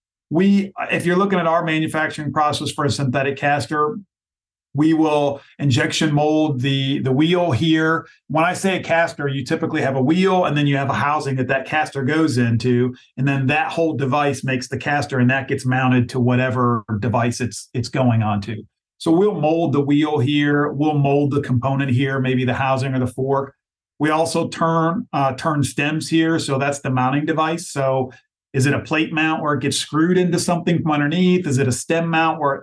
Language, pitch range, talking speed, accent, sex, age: English, 135-160 Hz, 200 wpm, American, male, 40-59